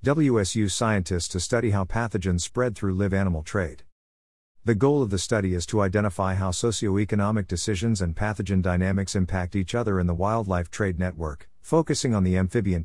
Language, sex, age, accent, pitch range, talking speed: English, male, 50-69, American, 90-110 Hz, 170 wpm